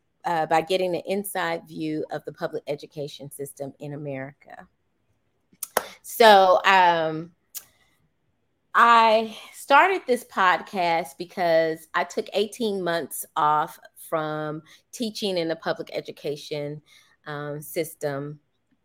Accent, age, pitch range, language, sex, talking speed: American, 30-49, 145-180 Hz, English, female, 105 wpm